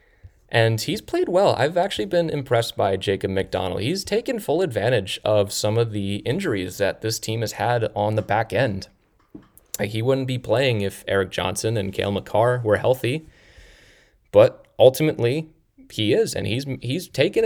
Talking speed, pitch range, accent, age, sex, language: 170 wpm, 100-130 Hz, American, 20-39, male, English